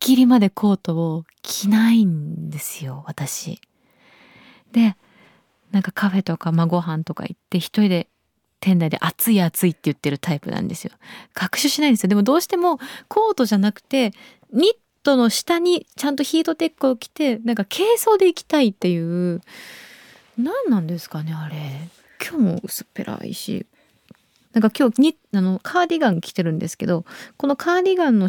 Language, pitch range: Japanese, 185-290 Hz